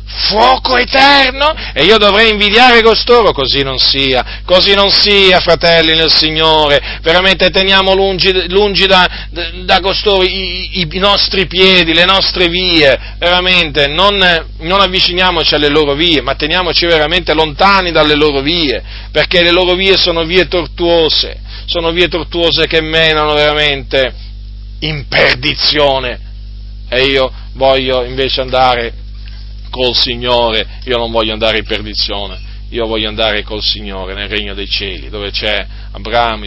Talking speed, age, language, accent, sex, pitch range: 140 wpm, 40-59, Italian, native, male, 110-170 Hz